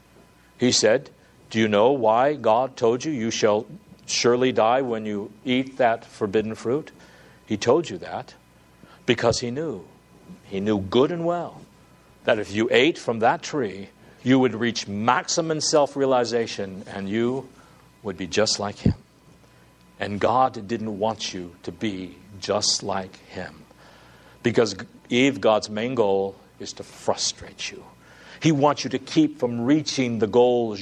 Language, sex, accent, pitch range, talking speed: English, male, American, 100-125 Hz, 150 wpm